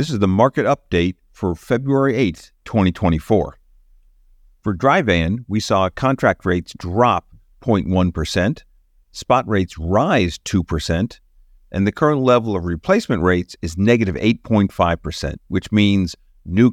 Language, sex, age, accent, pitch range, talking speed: English, male, 50-69, American, 90-115 Hz, 120 wpm